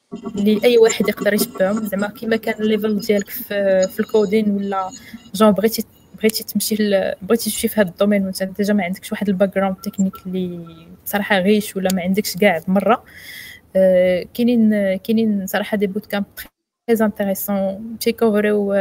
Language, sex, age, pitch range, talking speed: Arabic, female, 20-39, 190-215 Hz, 145 wpm